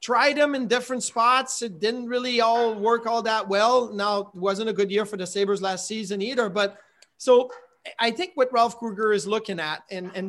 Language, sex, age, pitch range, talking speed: English, male, 30-49, 205-250 Hz, 215 wpm